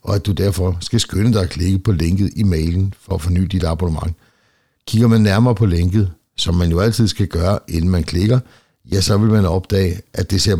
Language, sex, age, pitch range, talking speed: Danish, male, 60-79, 90-110 Hz, 225 wpm